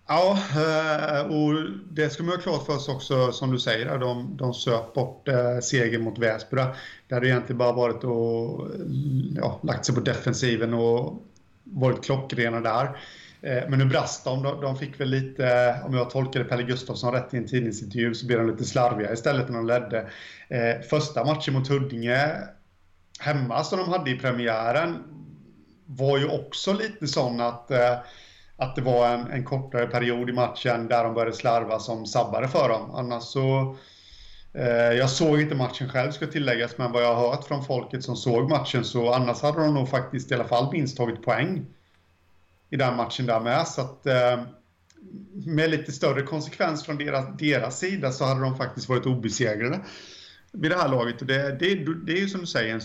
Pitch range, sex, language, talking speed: 120-140 Hz, male, Swedish, 185 wpm